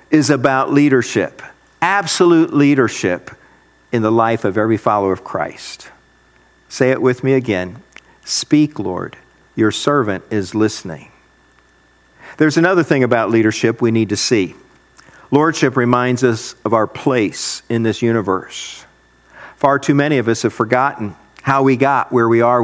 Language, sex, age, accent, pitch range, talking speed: English, male, 50-69, American, 110-145 Hz, 145 wpm